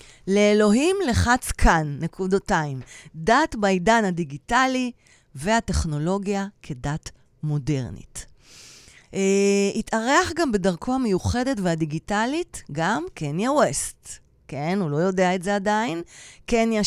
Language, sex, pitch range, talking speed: Hebrew, female, 155-210 Hz, 95 wpm